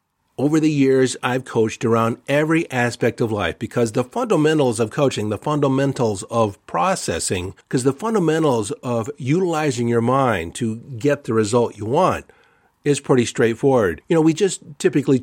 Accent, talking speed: American, 160 wpm